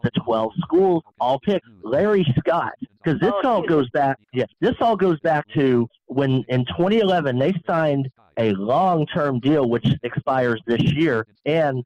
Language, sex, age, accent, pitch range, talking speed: English, male, 40-59, American, 120-150 Hz, 160 wpm